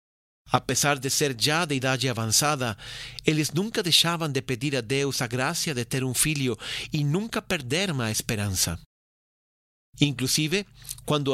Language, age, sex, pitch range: Portuguese, 40-59, male, 125-155 Hz